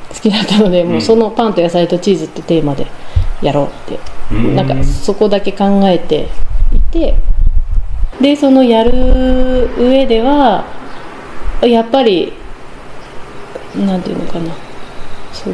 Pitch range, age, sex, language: 160-215 Hz, 40-59, female, Japanese